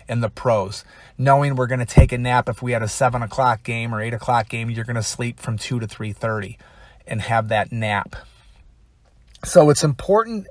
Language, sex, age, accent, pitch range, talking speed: English, male, 30-49, American, 115-140 Hz, 205 wpm